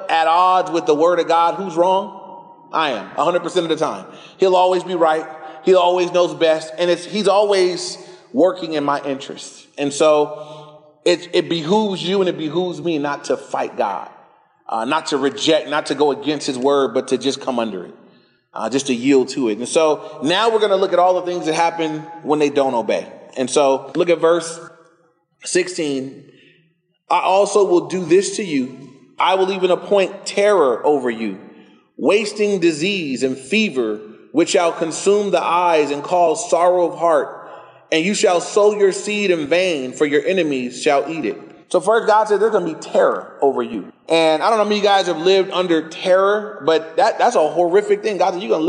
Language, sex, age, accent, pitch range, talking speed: English, male, 30-49, American, 155-190 Hz, 205 wpm